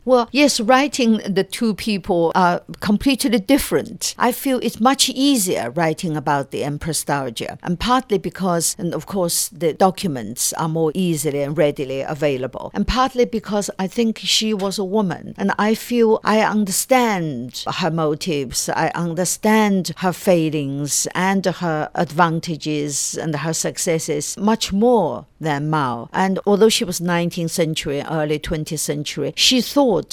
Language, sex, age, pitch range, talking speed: English, female, 60-79, 160-210 Hz, 145 wpm